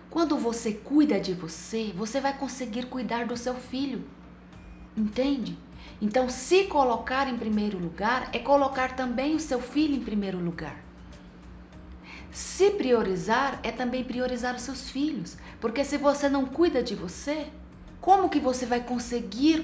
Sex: female